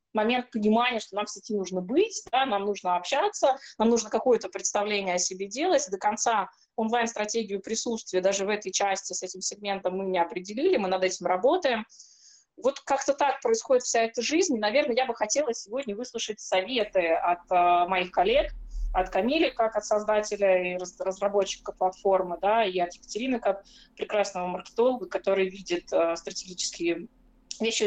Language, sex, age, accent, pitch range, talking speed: Russian, female, 20-39, native, 185-225 Hz, 165 wpm